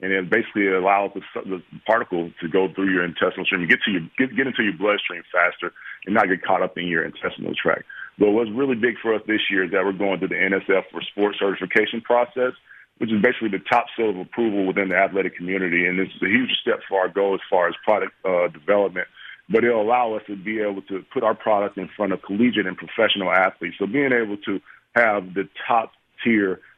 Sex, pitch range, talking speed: male, 95-110 Hz, 230 wpm